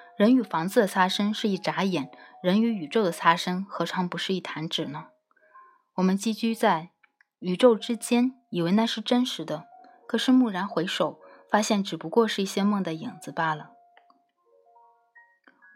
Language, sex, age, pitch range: Chinese, female, 20-39, 175-235 Hz